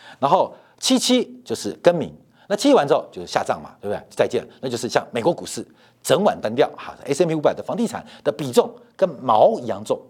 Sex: male